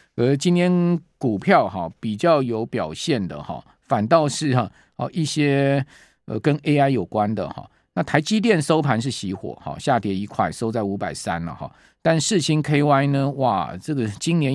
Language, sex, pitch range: Chinese, male, 105-150 Hz